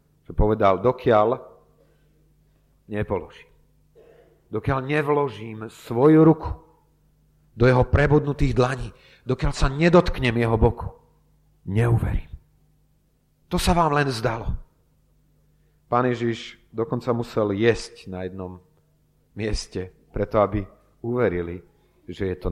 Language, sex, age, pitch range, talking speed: Slovak, male, 40-59, 95-140 Hz, 95 wpm